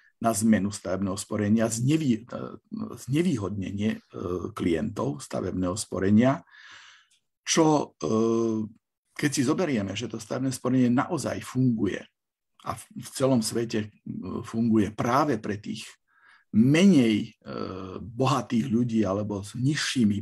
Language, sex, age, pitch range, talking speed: Slovak, male, 50-69, 100-130 Hz, 95 wpm